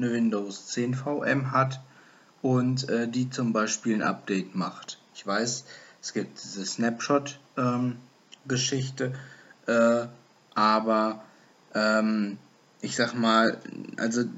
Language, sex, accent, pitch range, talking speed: German, male, German, 105-130 Hz, 115 wpm